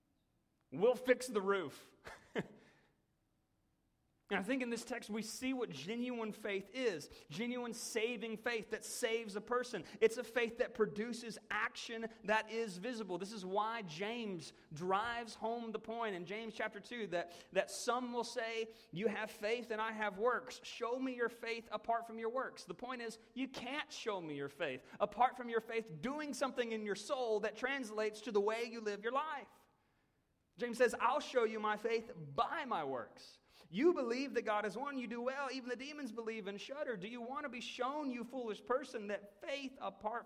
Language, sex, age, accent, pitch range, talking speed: English, male, 30-49, American, 215-260 Hz, 190 wpm